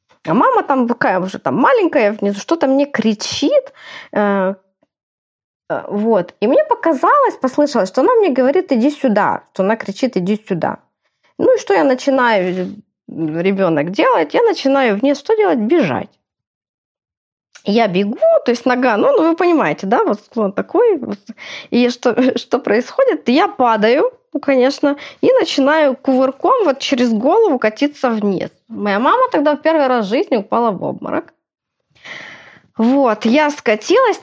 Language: Russian